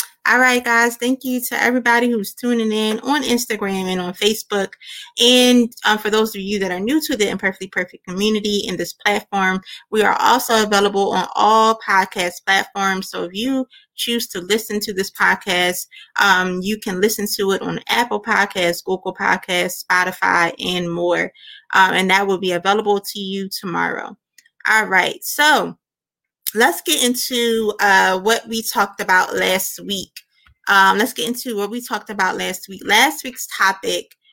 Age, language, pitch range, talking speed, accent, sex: 20-39, English, 190-230 Hz, 170 wpm, American, female